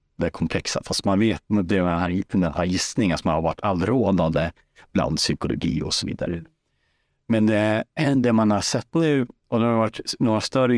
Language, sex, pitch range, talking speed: Swedish, male, 85-110 Hz, 175 wpm